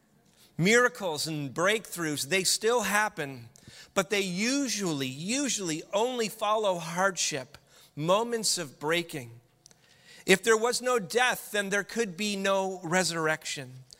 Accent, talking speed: American, 115 wpm